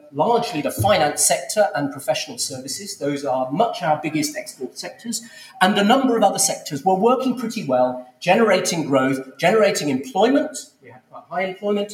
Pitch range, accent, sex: 150-220 Hz, British, male